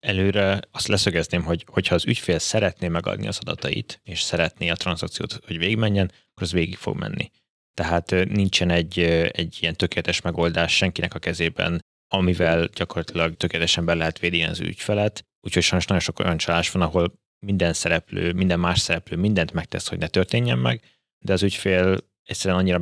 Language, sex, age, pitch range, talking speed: Hungarian, male, 20-39, 85-95 Hz, 170 wpm